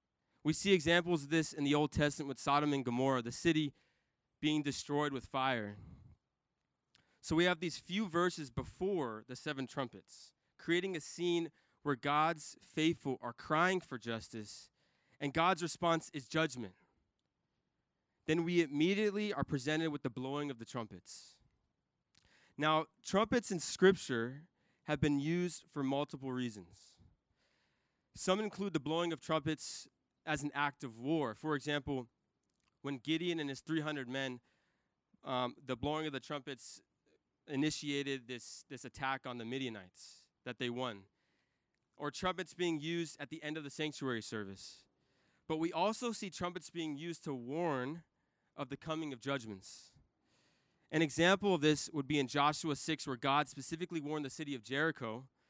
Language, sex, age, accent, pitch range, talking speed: English, male, 20-39, American, 130-160 Hz, 155 wpm